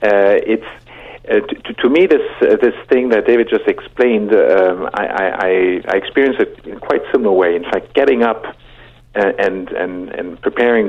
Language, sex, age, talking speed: English, male, 50-69, 185 wpm